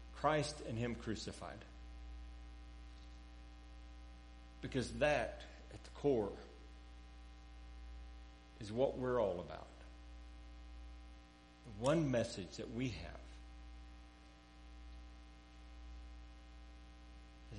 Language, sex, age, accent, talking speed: English, male, 60-79, American, 70 wpm